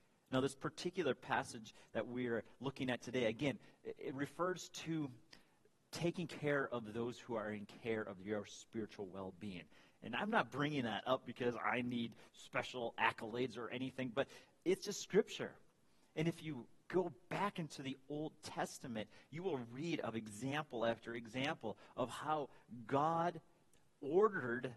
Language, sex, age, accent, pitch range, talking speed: English, male, 40-59, American, 115-160 Hz, 155 wpm